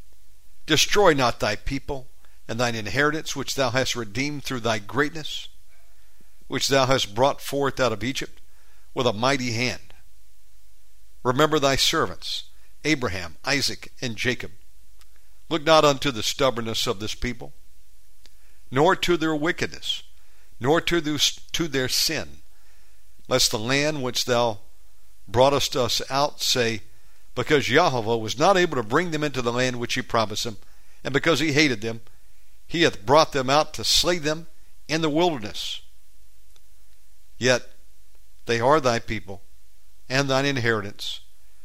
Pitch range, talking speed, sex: 100-135 Hz, 140 wpm, male